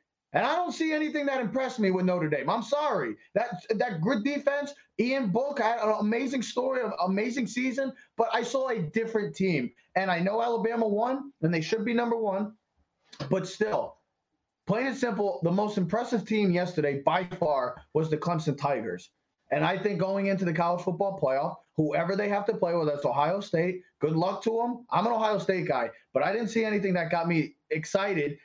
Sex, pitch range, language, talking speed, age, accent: male, 170-225 Hz, English, 200 wpm, 20-39, American